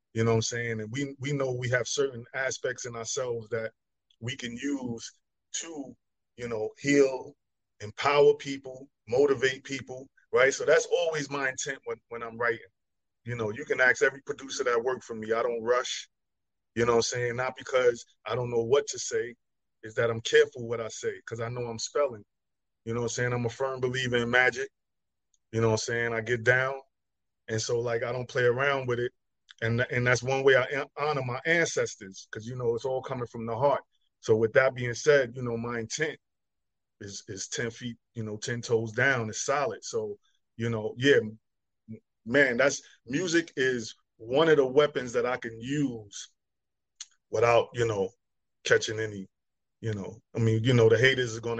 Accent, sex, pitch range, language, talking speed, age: American, male, 115-140 Hz, English, 200 wpm, 30-49